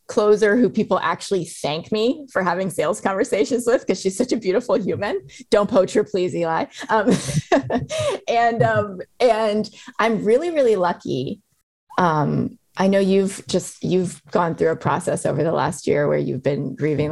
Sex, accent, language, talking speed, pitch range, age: female, American, English, 170 wpm, 145-200 Hz, 20-39